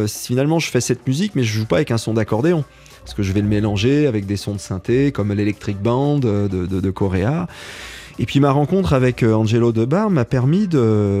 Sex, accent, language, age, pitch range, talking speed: male, French, French, 30-49, 105-135 Hz, 215 wpm